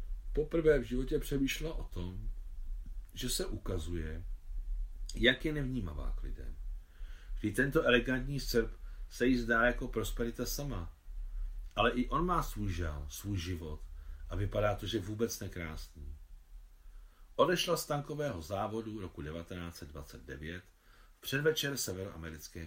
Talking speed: 120 wpm